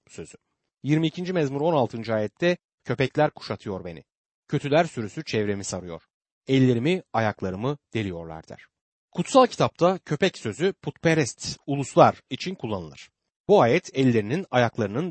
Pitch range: 110-165 Hz